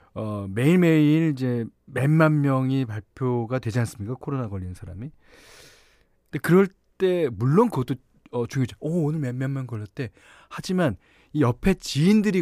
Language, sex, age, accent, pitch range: Korean, male, 40-59, native, 120-180 Hz